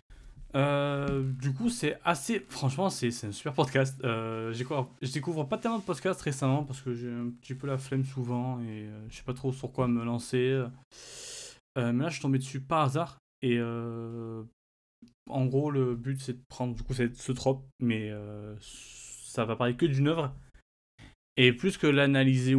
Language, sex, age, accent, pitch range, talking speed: French, male, 20-39, French, 115-140 Hz, 200 wpm